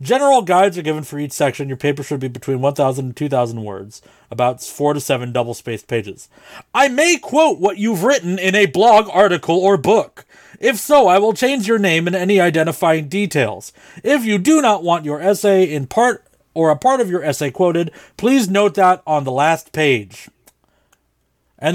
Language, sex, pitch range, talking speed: English, male, 140-215 Hz, 190 wpm